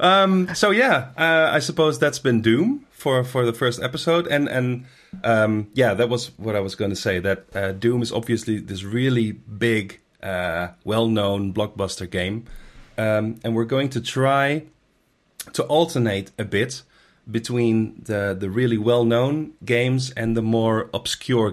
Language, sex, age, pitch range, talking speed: English, male, 30-49, 105-125 Hz, 160 wpm